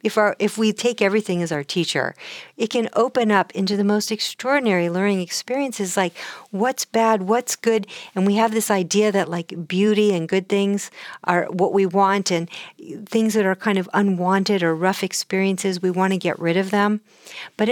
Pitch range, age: 180-230 Hz, 50-69